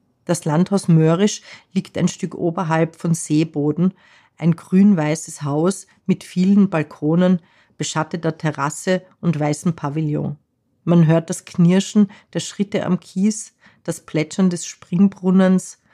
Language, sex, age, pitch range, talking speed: German, female, 40-59, 155-185 Hz, 120 wpm